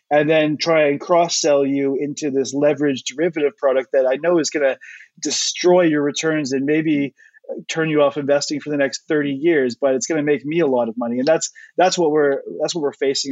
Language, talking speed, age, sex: English, 225 wpm, 30-49, male